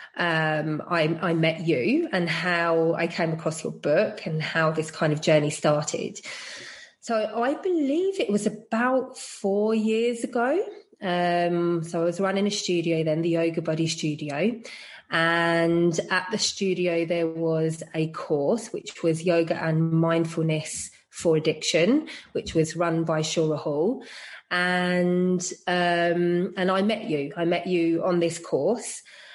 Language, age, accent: English, 30-49, British